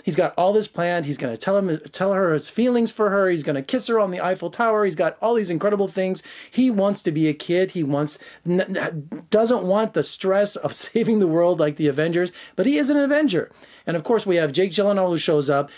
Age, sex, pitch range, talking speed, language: 30-49, male, 150-205 Hz, 250 wpm, English